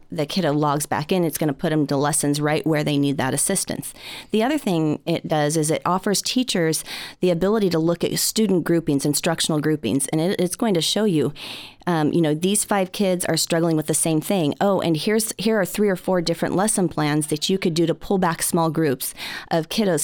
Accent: American